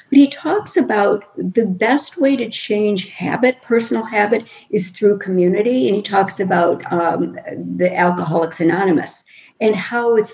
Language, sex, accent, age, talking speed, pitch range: English, female, American, 50-69, 150 wpm, 180-250 Hz